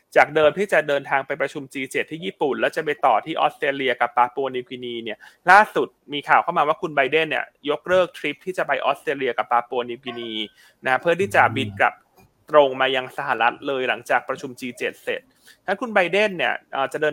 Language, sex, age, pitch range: Thai, male, 20-39, 135-180 Hz